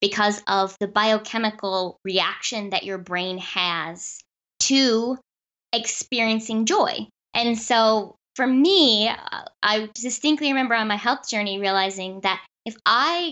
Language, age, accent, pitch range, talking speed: English, 10-29, American, 195-245 Hz, 120 wpm